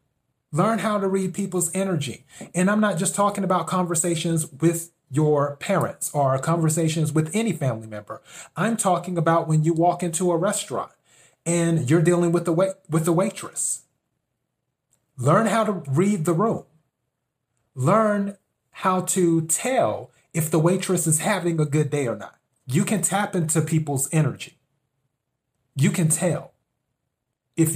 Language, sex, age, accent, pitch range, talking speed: English, male, 30-49, American, 135-175 Hz, 150 wpm